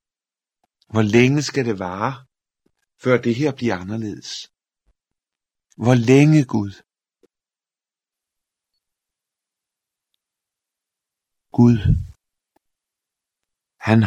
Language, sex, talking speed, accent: Danish, male, 65 wpm, native